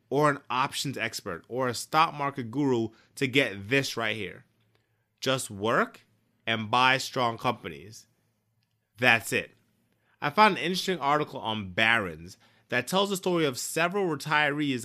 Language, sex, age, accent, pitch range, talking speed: English, male, 30-49, American, 115-145 Hz, 145 wpm